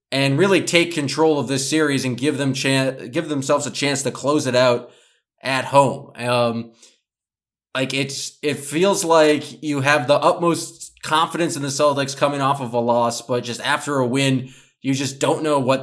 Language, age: English, 20-39